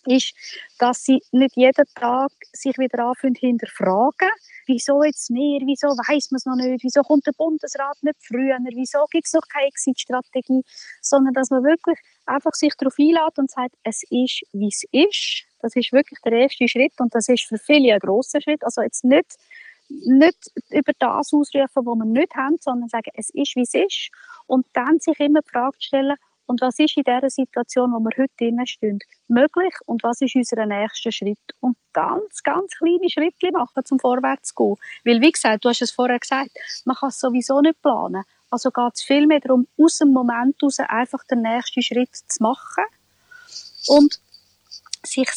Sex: female